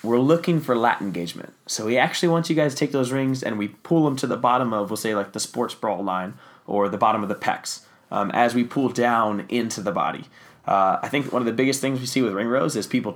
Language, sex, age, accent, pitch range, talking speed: English, male, 20-39, American, 105-145 Hz, 270 wpm